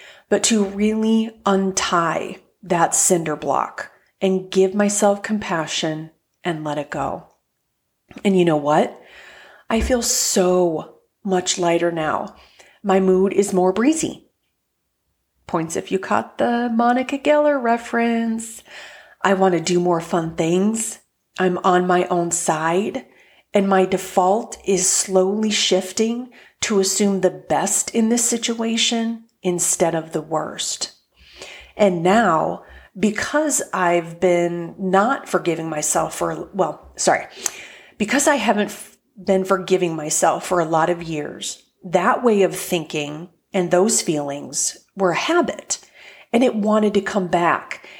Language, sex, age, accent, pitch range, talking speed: English, female, 40-59, American, 175-215 Hz, 130 wpm